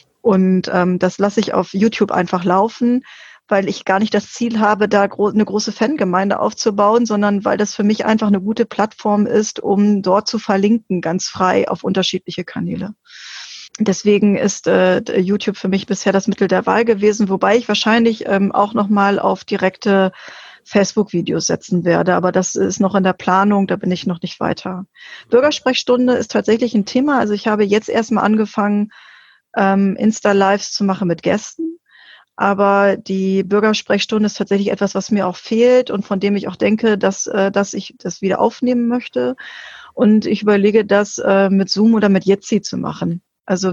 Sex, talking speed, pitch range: female, 175 wpm, 195-220 Hz